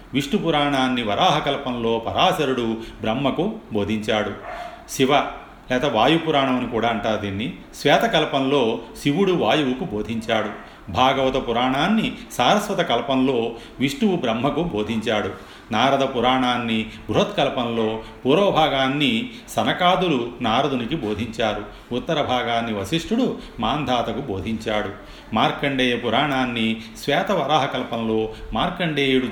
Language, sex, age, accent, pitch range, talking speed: Telugu, male, 40-59, native, 110-145 Hz, 85 wpm